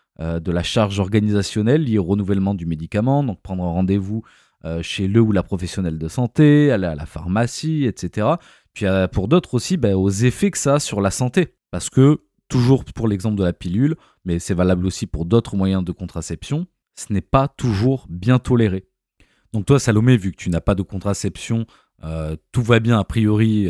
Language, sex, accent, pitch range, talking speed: French, male, French, 95-130 Hz, 190 wpm